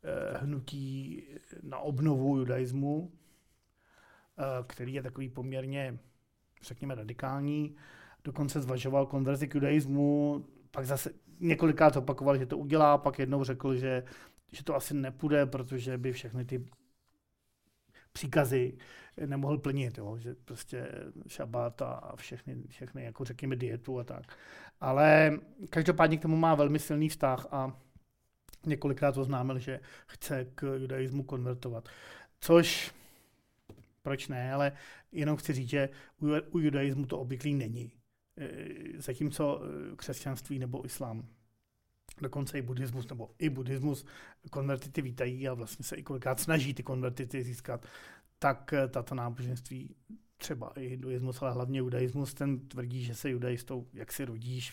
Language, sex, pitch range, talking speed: Czech, male, 125-145 Hz, 125 wpm